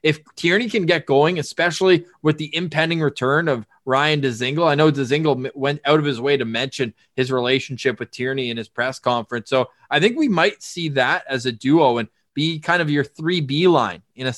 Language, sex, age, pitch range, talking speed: English, male, 20-39, 135-175 Hz, 210 wpm